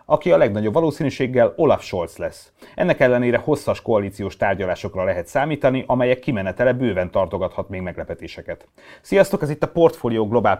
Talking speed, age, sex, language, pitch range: 145 wpm, 30-49, male, Hungarian, 95-120 Hz